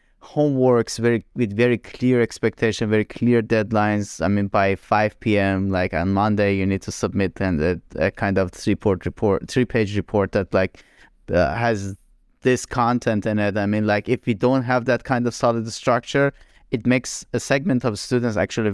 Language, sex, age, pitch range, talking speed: English, male, 30-49, 100-120 Hz, 175 wpm